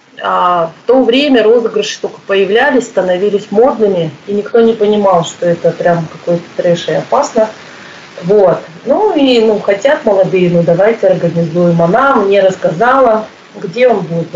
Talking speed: 150 wpm